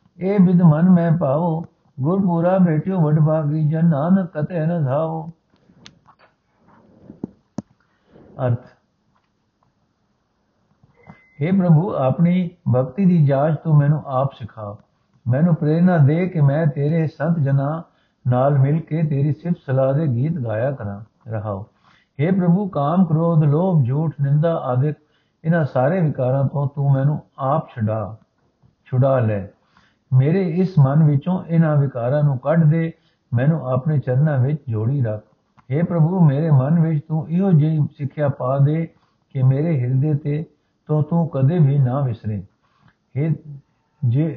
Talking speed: 135 wpm